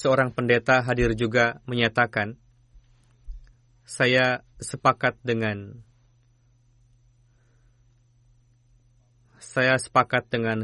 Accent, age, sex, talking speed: native, 20-39, male, 60 wpm